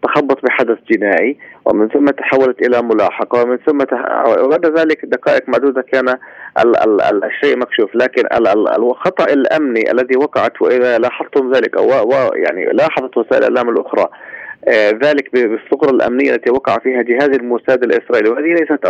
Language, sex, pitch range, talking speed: Arabic, male, 120-155 Hz, 155 wpm